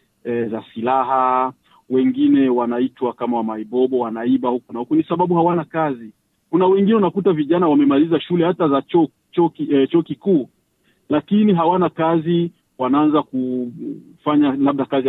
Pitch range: 135-195 Hz